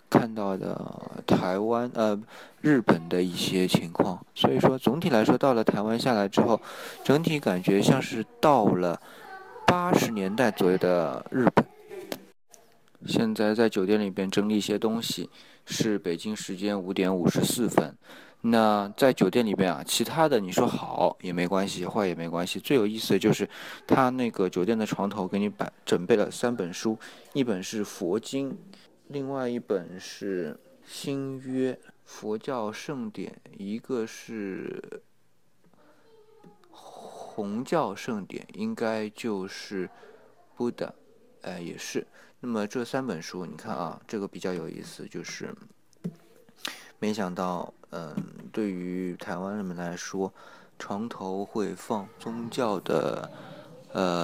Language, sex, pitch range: Chinese, male, 95-130 Hz